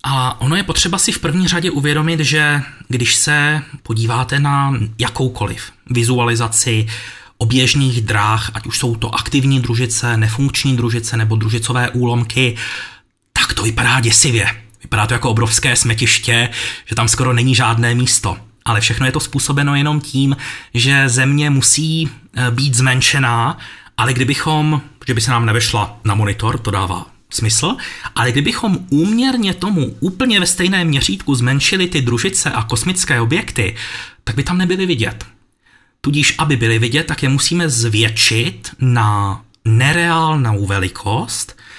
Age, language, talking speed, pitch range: 30-49, Czech, 140 wpm, 115-150 Hz